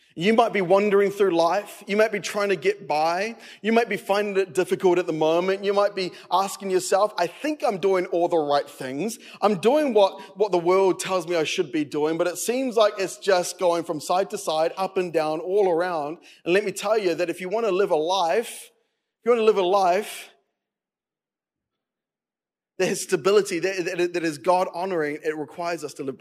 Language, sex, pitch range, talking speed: English, male, 155-195 Hz, 220 wpm